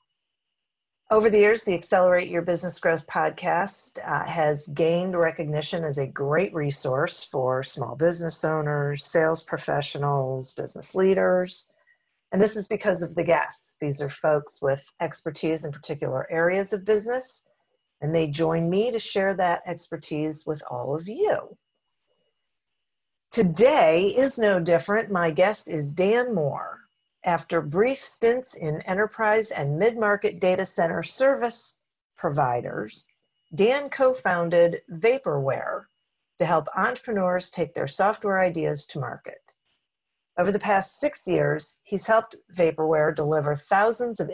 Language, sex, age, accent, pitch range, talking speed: English, female, 50-69, American, 155-210 Hz, 130 wpm